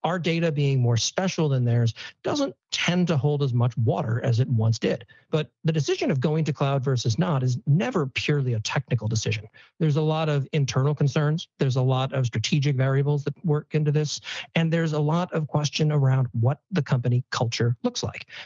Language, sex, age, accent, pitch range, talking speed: English, male, 50-69, American, 125-155 Hz, 200 wpm